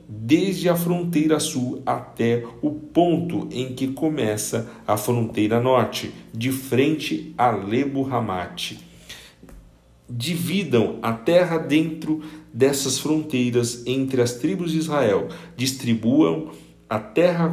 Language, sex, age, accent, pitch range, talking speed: Portuguese, male, 50-69, Brazilian, 110-155 Hz, 110 wpm